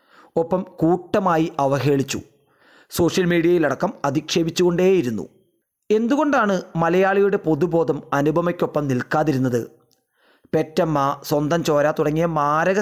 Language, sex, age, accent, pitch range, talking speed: Malayalam, male, 30-49, native, 150-190 Hz, 75 wpm